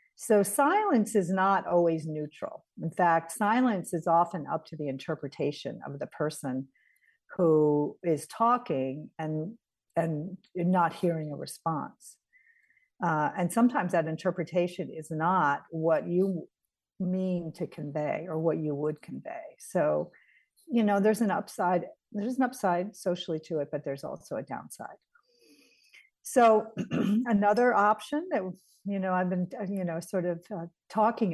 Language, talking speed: English, 145 wpm